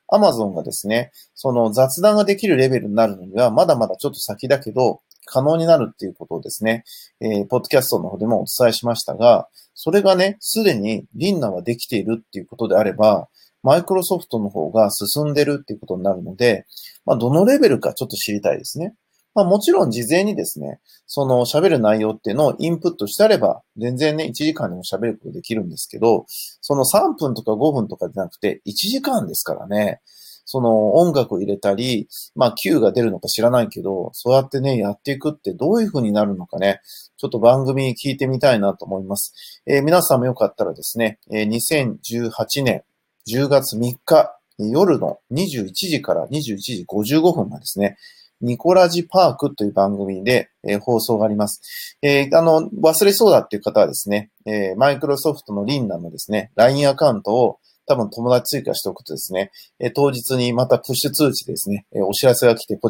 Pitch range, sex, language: 110-150 Hz, male, Japanese